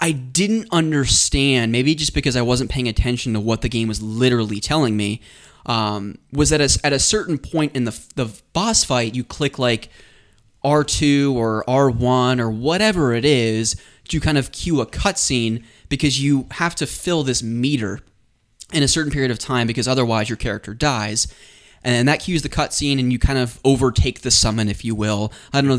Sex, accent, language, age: male, American, English, 20-39